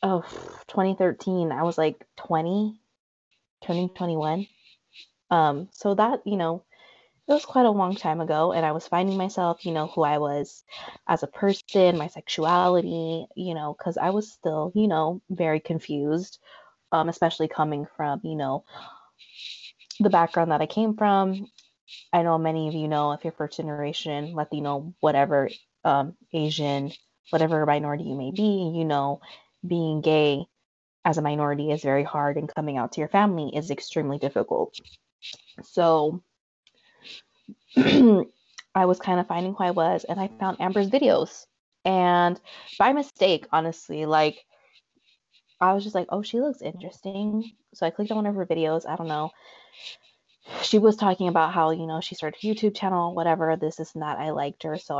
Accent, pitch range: American, 155-190 Hz